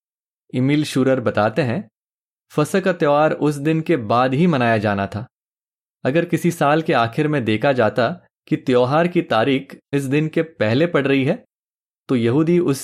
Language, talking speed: Hindi, 170 wpm